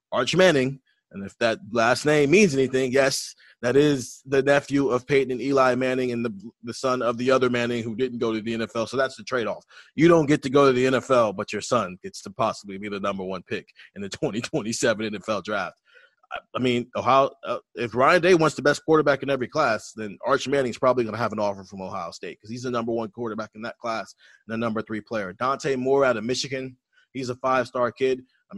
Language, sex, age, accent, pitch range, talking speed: English, male, 30-49, American, 110-135 Hz, 235 wpm